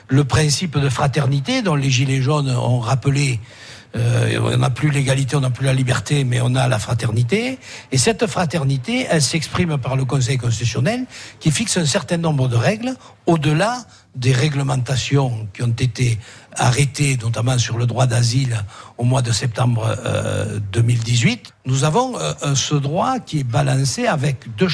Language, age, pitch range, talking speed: French, 60-79, 125-160 Hz, 165 wpm